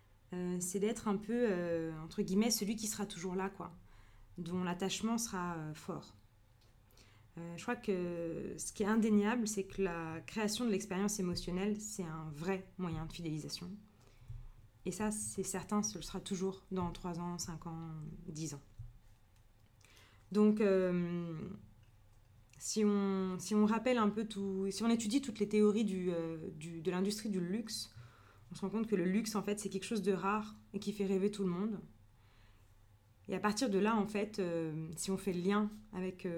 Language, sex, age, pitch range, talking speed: French, female, 20-39, 160-205 Hz, 180 wpm